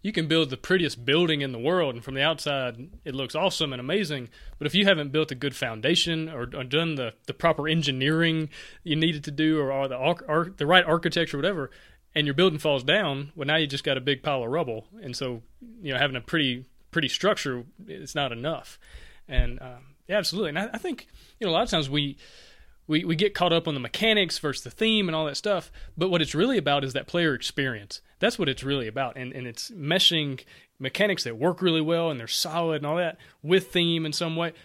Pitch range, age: 135-165 Hz, 30-49